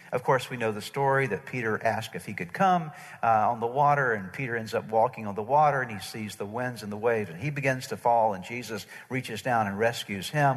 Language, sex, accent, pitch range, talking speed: English, male, American, 115-145 Hz, 255 wpm